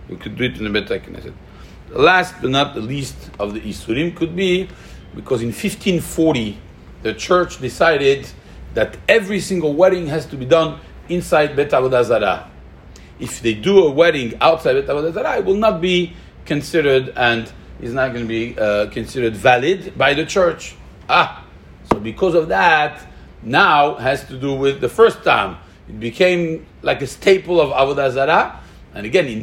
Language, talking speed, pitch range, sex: English, 175 wpm, 115-165 Hz, male